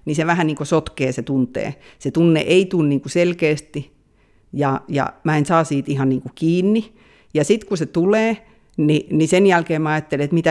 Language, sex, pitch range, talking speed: Finnish, female, 145-190 Hz, 205 wpm